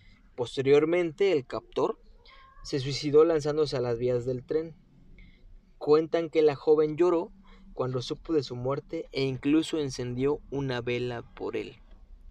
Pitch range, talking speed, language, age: 125-155 Hz, 135 wpm, Spanish, 20-39